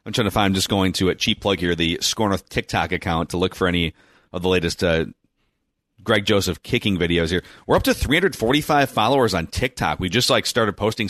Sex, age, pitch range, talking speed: male, 30-49, 90-115 Hz, 220 wpm